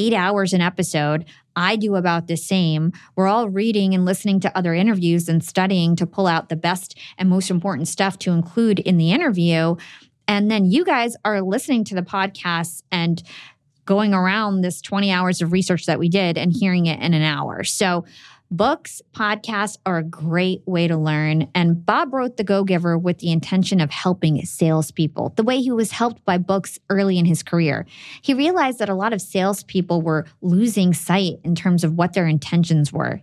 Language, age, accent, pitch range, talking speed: English, 20-39, American, 165-205 Hz, 195 wpm